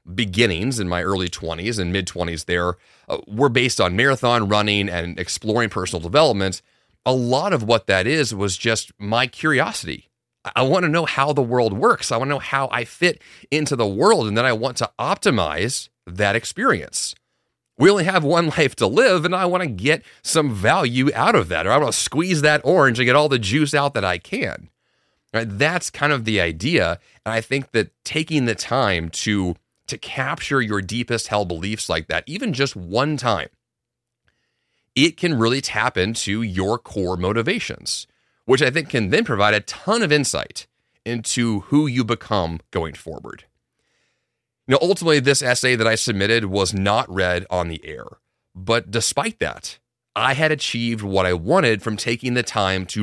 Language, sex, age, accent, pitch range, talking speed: English, male, 30-49, American, 100-140 Hz, 185 wpm